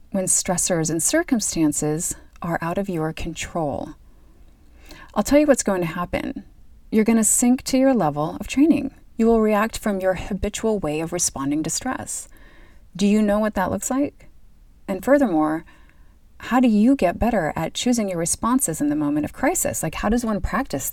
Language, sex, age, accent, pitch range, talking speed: English, female, 30-49, American, 160-240 Hz, 185 wpm